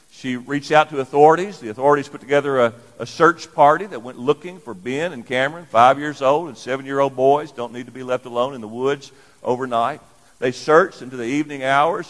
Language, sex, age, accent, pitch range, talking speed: English, male, 50-69, American, 125-155 Hz, 210 wpm